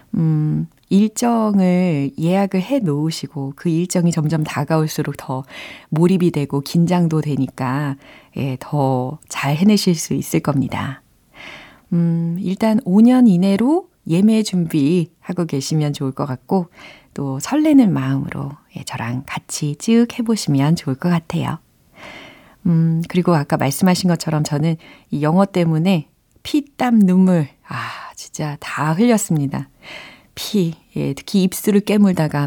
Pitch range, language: 145-205 Hz, Korean